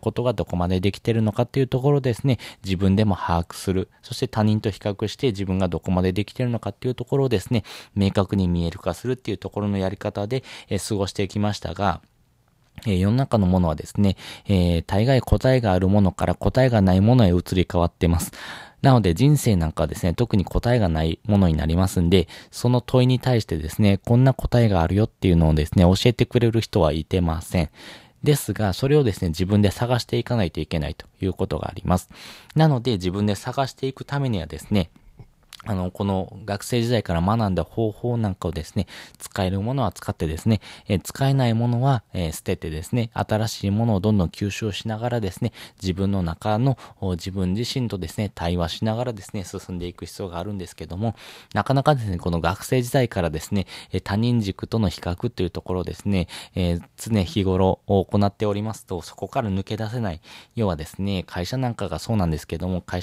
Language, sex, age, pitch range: Japanese, male, 20-39, 90-115 Hz